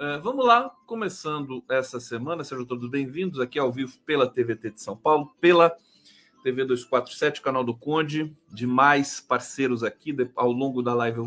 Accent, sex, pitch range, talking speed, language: Brazilian, male, 135-195 Hz, 160 wpm, Portuguese